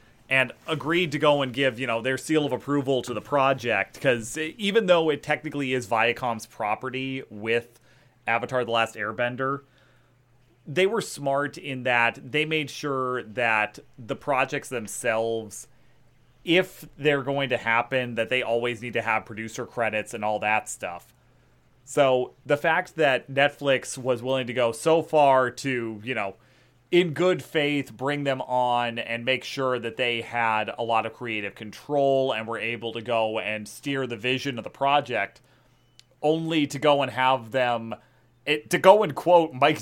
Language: English